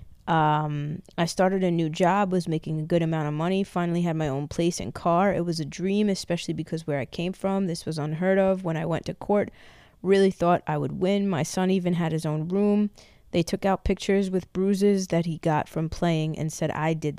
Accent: American